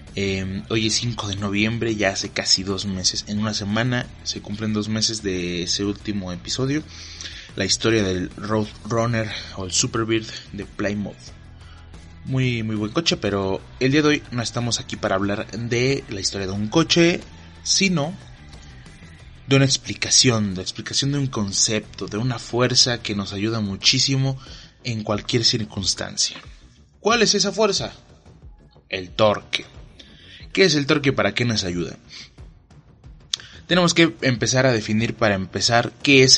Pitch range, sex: 100-125 Hz, male